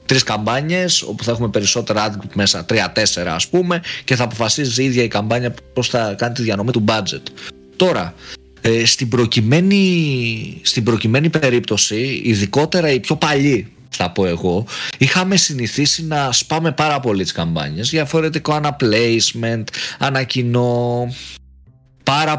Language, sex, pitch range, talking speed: Greek, male, 105-135 Hz, 130 wpm